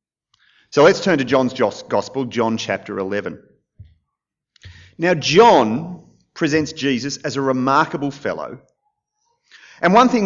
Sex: male